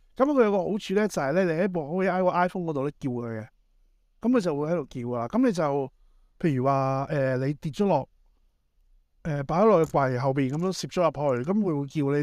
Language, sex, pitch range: Chinese, male, 130-180 Hz